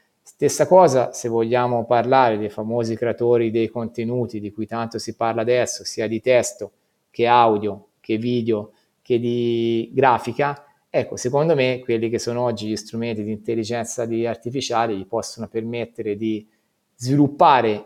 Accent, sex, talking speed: native, male, 145 wpm